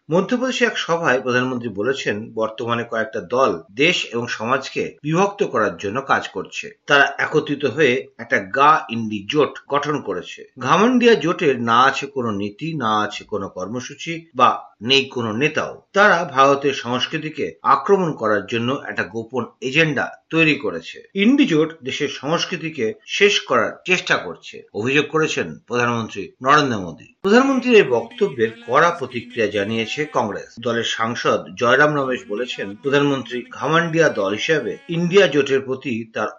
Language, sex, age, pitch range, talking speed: Bengali, male, 50-69, 125-180 Hz, 105 wpm